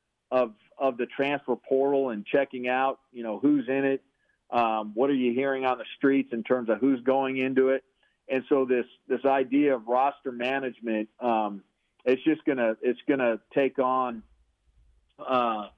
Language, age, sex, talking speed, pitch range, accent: English, 40-59, male, 180 wpm, 120-135 Hz, American